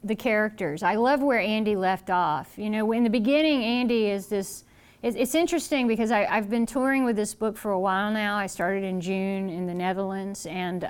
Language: English